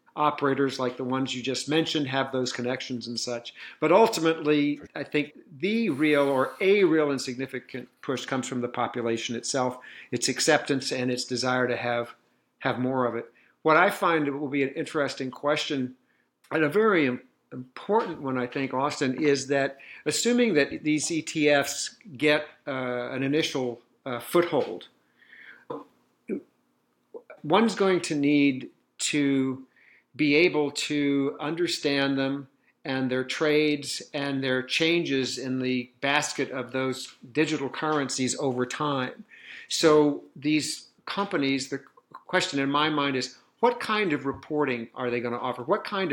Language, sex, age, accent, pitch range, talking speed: English, male, 50-69, American, 130-155 Hz, 150 wpm